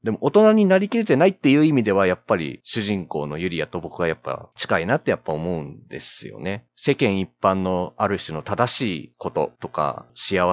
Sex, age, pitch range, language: male, 30-49, 85-110 Hz, Japanese